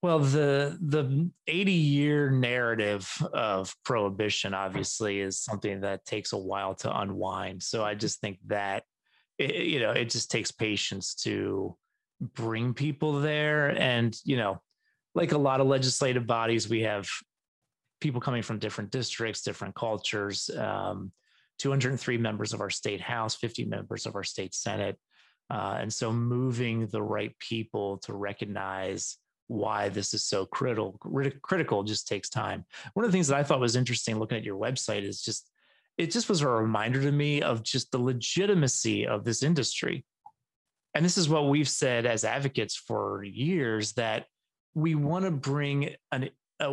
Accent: American